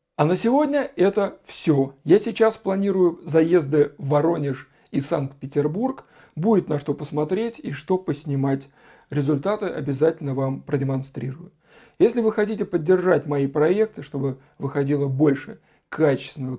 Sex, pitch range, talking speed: male, 145-210 Hz, 125 wpm